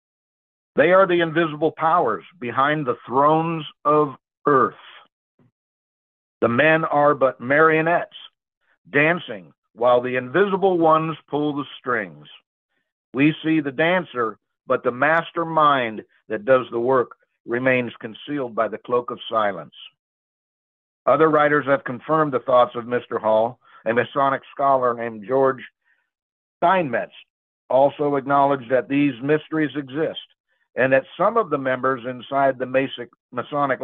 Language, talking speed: English, 130 wpm